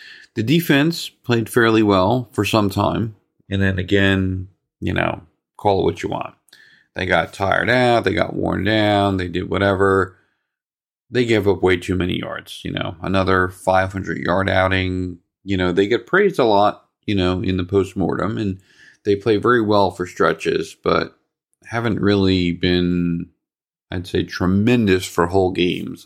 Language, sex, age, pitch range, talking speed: English, male, 40-59, 90-105 Hz, 160 wpm